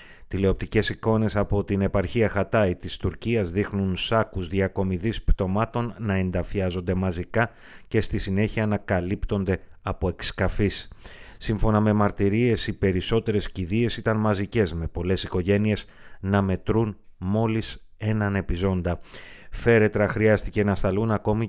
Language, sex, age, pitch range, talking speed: Greek, male, 30-49, 95-110 Hz, 120 wpm